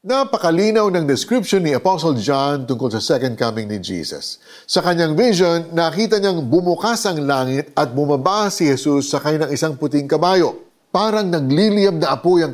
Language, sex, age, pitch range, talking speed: Filipino, male, 50-69, 135-195 Hz, 165 wpm